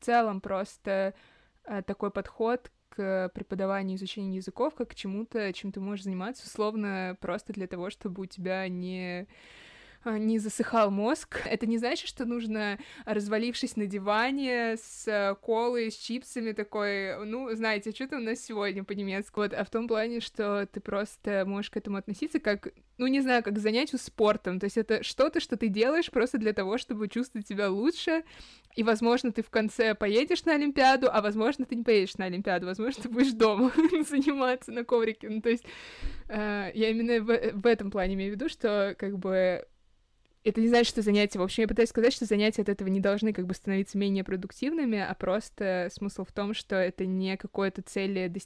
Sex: female